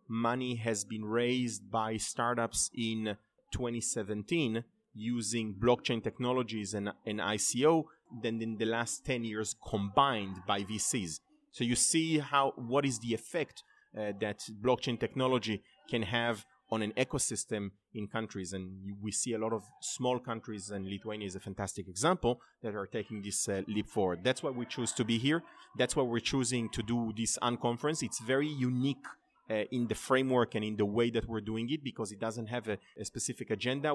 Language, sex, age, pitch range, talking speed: English, male, 30-49, 105-125 Hz, 180 wpm